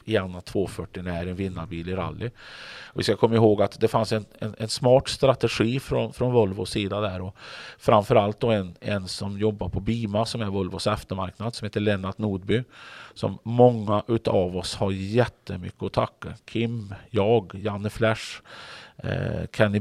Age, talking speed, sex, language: 40-59, 175 wpm, male, Swedish